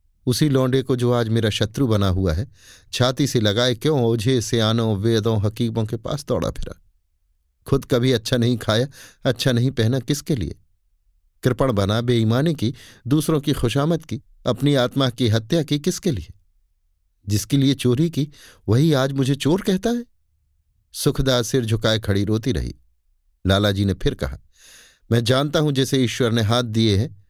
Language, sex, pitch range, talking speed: Hindi, male, 95-130 Hz, 170 wpm